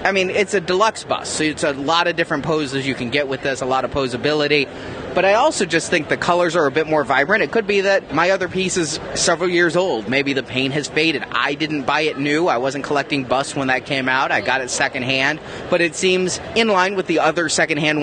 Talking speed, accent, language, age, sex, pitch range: 255 wpm, American, English, 30-49, male, 145-195 Hz